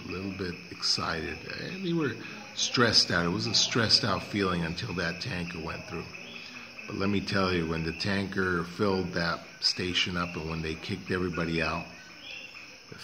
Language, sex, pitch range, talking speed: English, male, 85-100 Hz, 170 wpm